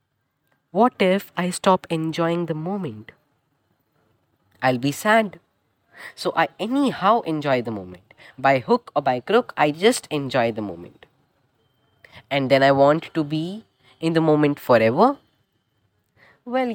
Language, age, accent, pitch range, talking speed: English, 20-39, Indian, 140-225 Hz, 135 wpm